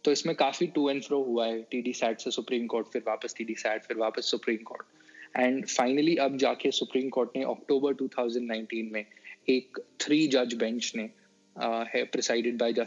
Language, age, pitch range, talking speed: Hindi, 20-39, 125-165 Hz, 145 wpm